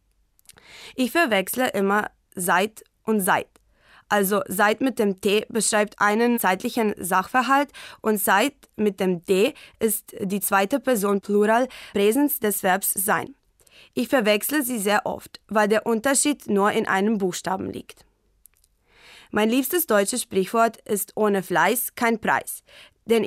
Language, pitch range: German, 195-230 Hz